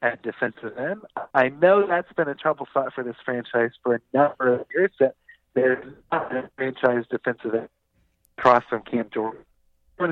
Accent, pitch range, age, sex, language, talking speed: American, 125-165 Hz, 40-59, male, English, 180 wpm